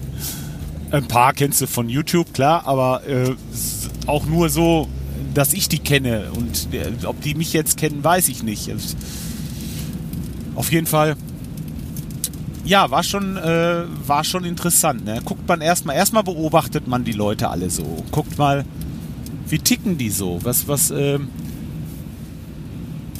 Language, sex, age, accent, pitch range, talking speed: German, male, 40-59, German, 135-175 Hz, 145 wpm